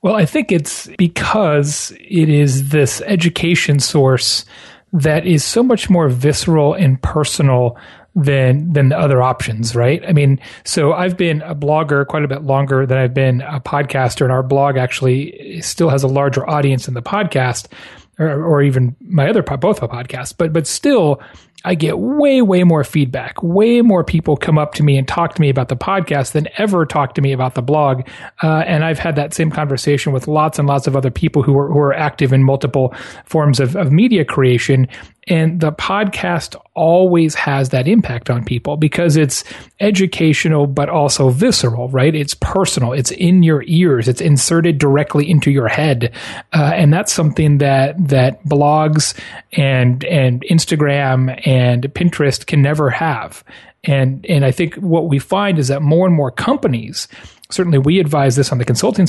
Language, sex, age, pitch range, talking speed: English, male, 30-49, 135-165 Hz, 185 wpm